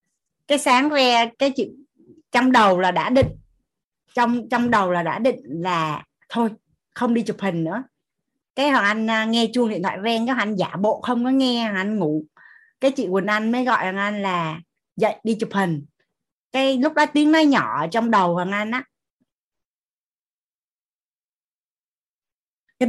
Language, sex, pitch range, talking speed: Vietnamese, female, 195-265 Hz, 170 wpm